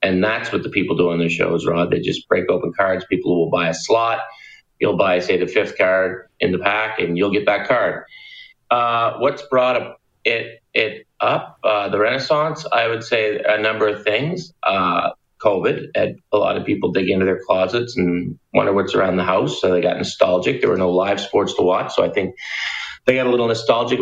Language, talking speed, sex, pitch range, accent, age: English, 215 wpm, male, 95-140 Hz, American, 40-59